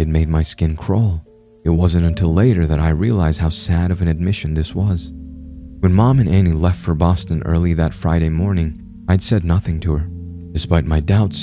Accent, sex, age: American, male, 30-49